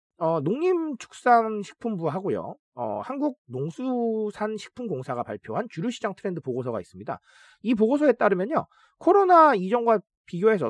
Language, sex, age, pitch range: Korean, male, 40-59, 175-255 Hz